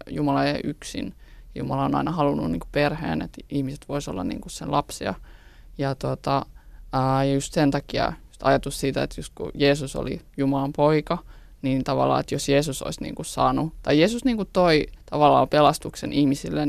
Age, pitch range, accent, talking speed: 20-39, 135-150 Hz, native, 170 wpm